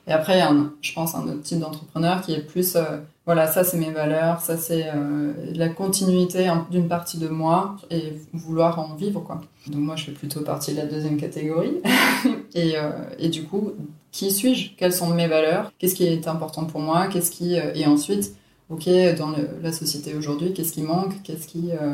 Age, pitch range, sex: 20-39, 150-170 Hz, female